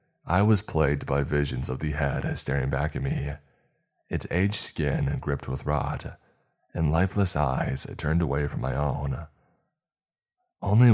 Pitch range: 70-95 Hz